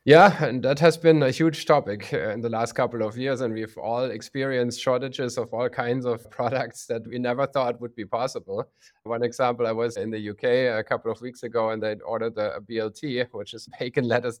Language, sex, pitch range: English, male, 115-135 Hz